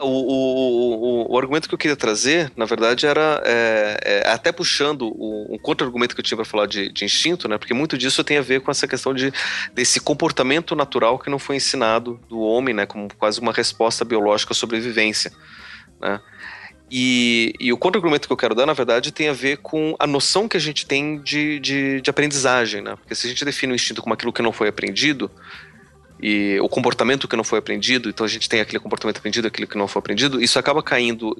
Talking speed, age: 220 wpm, 30-49